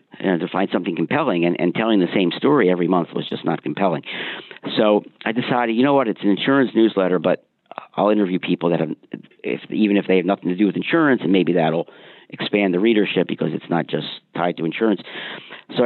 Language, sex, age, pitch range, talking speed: English, male, 50-69, 85-105 Hz, 220 wpm